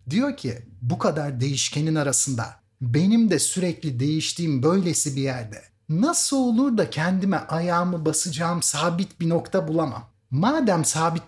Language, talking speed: Turkish, 135 wpm